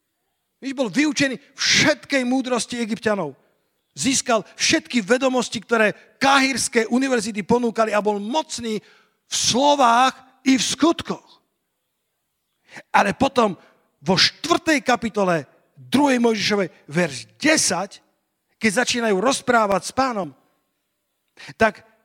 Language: Slovak